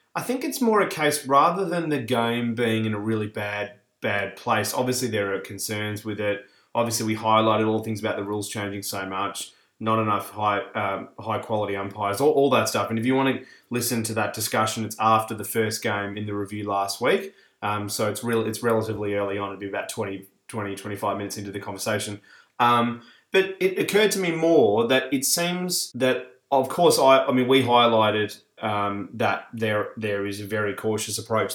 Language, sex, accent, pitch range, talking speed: English, male, Australian, 105-125 Hz, 210 wpm